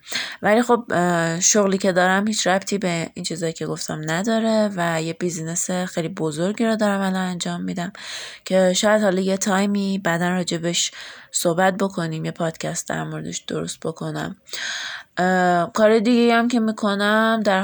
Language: Persian